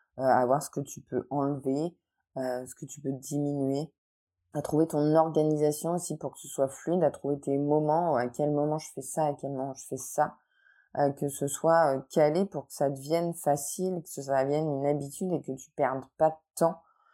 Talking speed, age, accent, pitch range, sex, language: 215 wpm, 20-39, French, 140-175 Hz, female, French